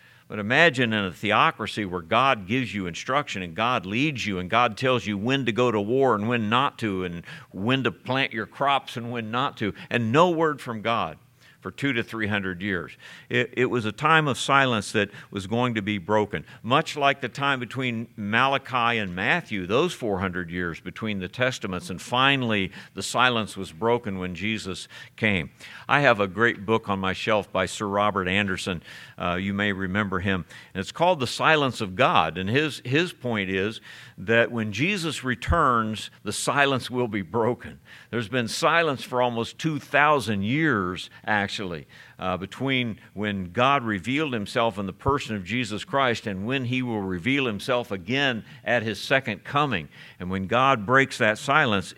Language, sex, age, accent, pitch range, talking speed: English, male, 50-69, American, 100-130 Hz, 180 wpm